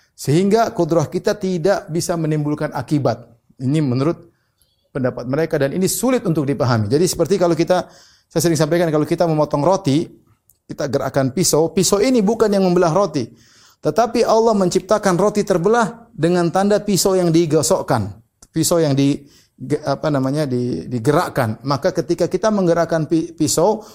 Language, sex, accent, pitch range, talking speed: Indonesian, male, native, 140-180 Hz, 145 wpm